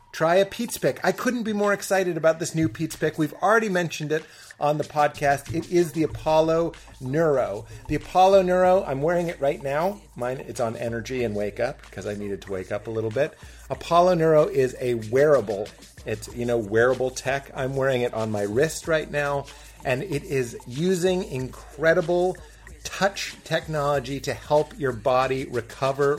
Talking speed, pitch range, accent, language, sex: 185 wpm, 125-165 Hz, American, English, male